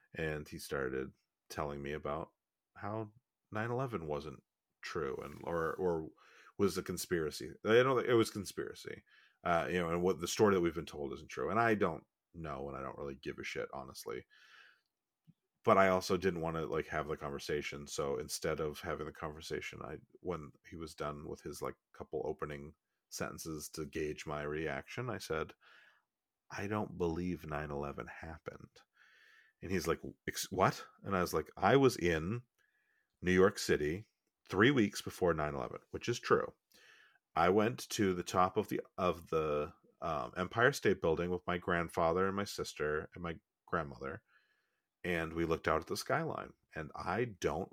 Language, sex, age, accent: English, male, 40-59, American